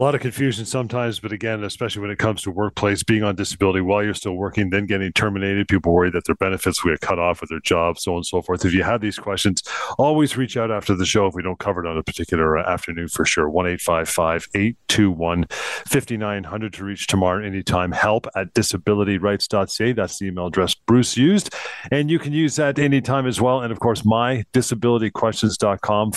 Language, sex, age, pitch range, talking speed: English, male, 40-59, 95-120 Hz, 210 wpm